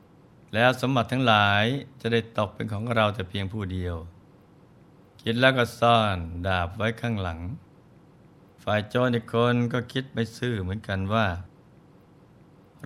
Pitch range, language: 100-125 Hz, Thai